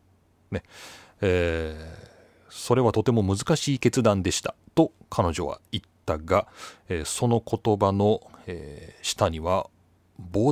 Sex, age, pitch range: male, 30-49, 95-135 Hz